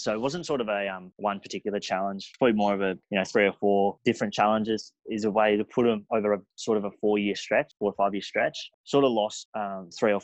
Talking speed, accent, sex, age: 260 wpm, Australian, male, 20-39